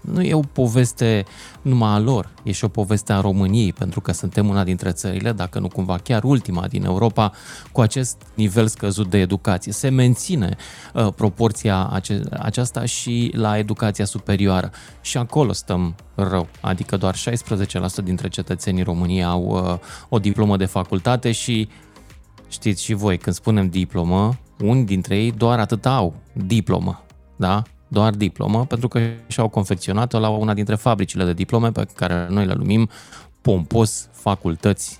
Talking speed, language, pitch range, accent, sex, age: 155 wpm, Romanian, 95-125 Hz, native, male, 20-39